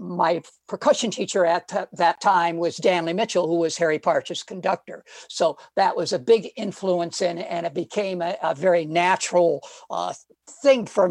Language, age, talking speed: English, 60-79, 170 wpm